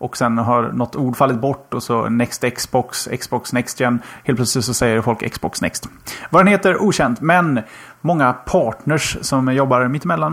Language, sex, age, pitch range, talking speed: Swedish, male, 30-49, 120-150 Hz, 180 wpm